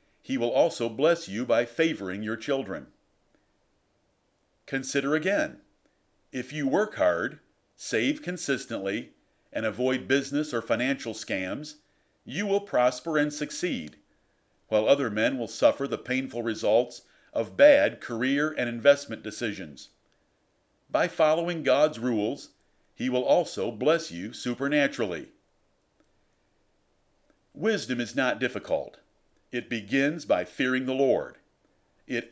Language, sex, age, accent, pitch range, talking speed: English, male, 50-69, American, 120-160 Hz, 115 wpm